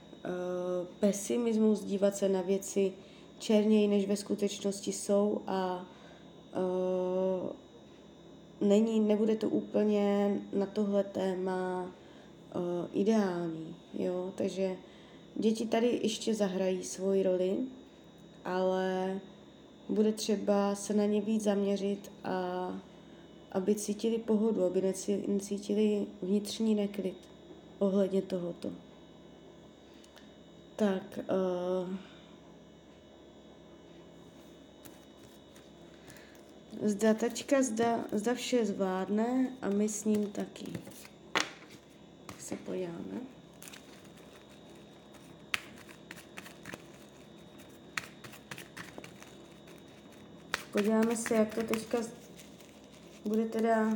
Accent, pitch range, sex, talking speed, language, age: native, 185-215 Hz, female, 80 wpm, Czech, 20-39